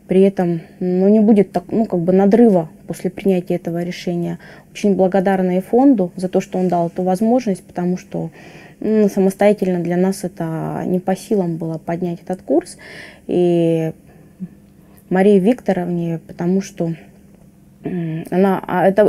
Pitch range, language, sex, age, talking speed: 175-200 Hz, Russian, female, 20-39, 130 wpm